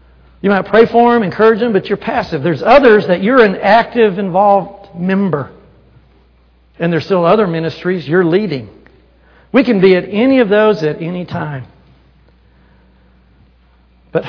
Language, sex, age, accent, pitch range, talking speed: English, male, 60-79, American, 135-200 Hz, 150 wpm